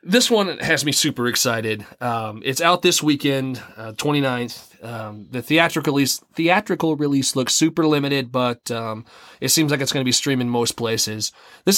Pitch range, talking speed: 125-155 Hz, 180 wpm